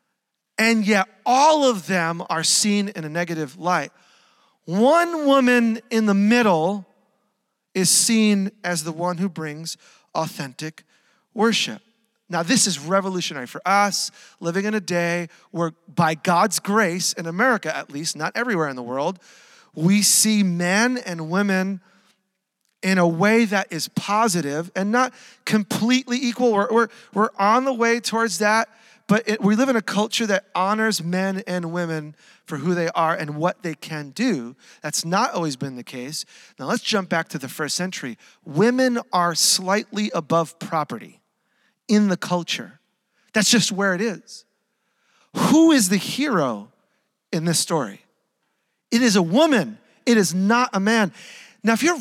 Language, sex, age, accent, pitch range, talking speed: English, male, 40-59, American, 175-235 Hz, 160 wpm